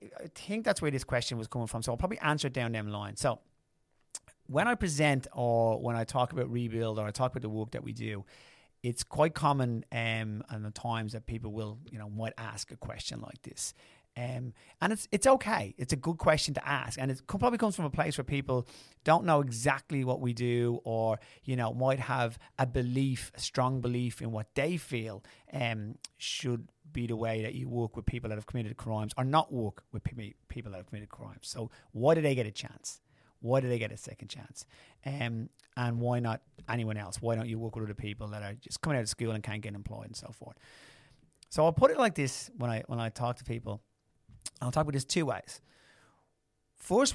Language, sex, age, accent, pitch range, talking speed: English, male, 30-49, British, 110-135 Hz, 230 wpm